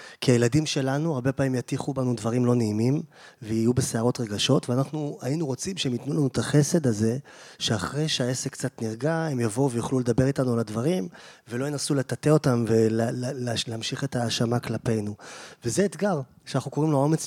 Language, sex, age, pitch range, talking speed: Hebrew, male, 20-39, 120-145 Hz, 165 wpm